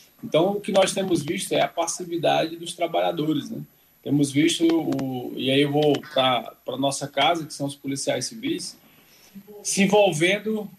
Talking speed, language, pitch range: 165 wpm, Portuguese, 140-170 Hz